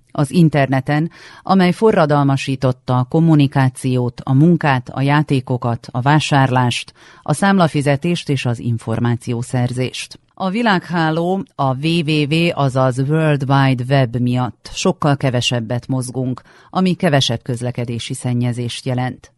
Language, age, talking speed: Hungarian, 40-59, 105 wpm